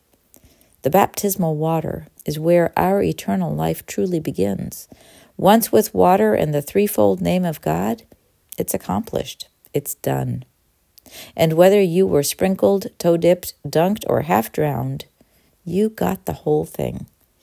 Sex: female